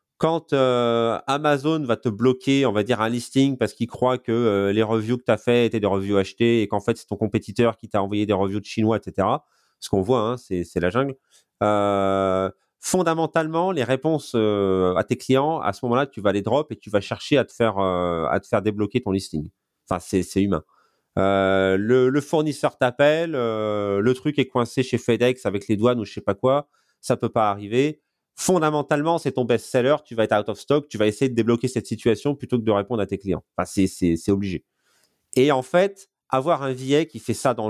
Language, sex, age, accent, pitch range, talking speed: French, male, 30-49, French, 105-145 Hz, 230 wpm